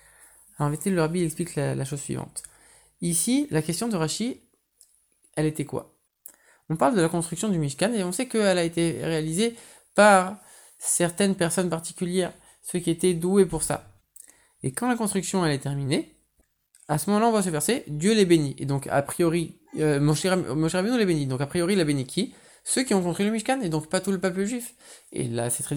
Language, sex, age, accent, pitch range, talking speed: French, male, 20-39, French, 155-205 Hz, 210 wpm